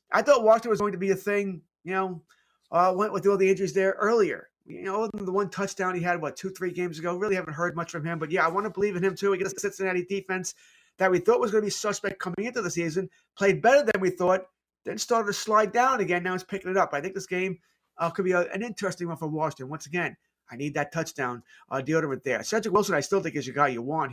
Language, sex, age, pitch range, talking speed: English, male, 30-49, 160-195 Hz, 275 wpm